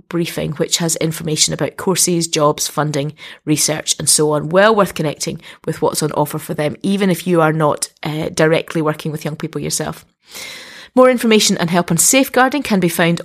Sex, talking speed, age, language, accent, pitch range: female, 190 wpm, 30-49, English, British, 155-195 Hz